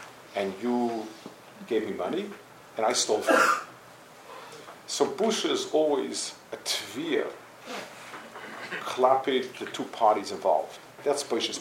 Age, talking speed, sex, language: 50-69, 120 wpm, male, English